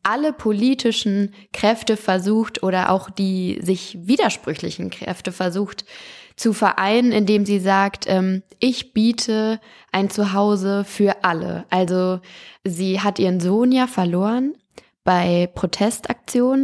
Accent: German